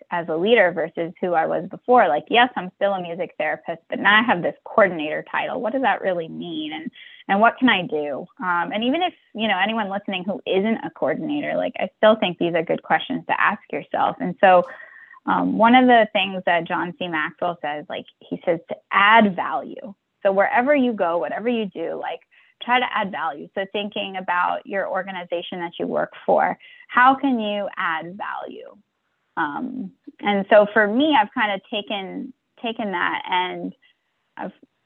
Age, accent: 20-39, American